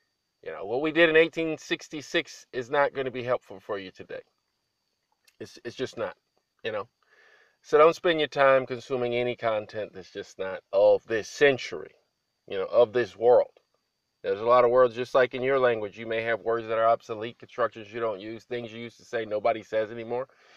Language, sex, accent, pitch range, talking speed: English, male, American, 115-170 Hz, 205 wpm